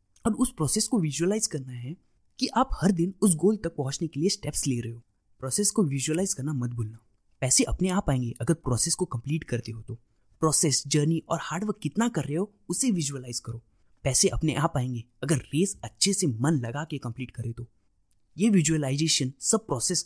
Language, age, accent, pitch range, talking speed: Hindi, 20-39, native, 125-185 Hz, 200 wpm